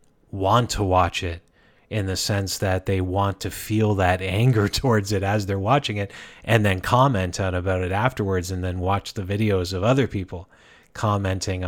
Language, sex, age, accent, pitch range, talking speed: English, male, 30-49, American, 90-105 Hz, 185 wpm